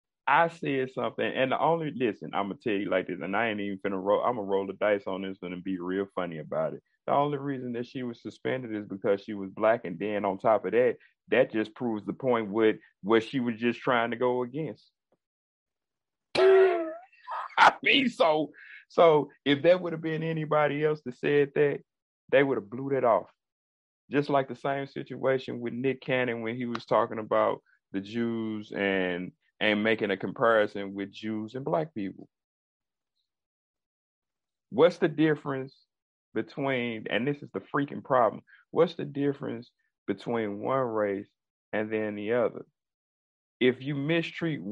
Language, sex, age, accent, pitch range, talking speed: English, male, 30-49, American, 105-145 Hz, 180 wpm